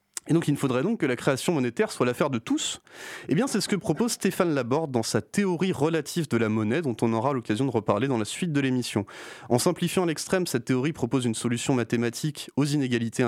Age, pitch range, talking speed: 30-49, 120-165 Hz, 230 wpm